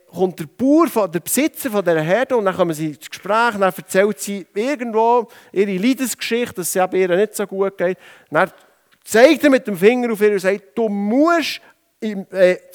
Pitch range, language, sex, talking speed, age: 175-235 Hz, German, male, 190 wpm, 50-69